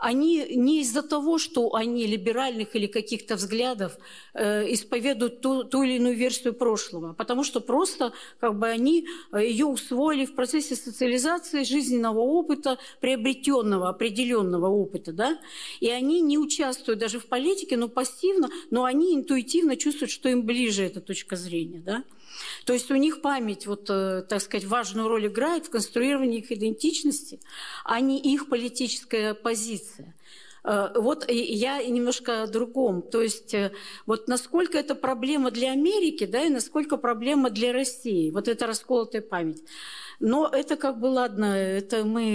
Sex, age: female, 50-69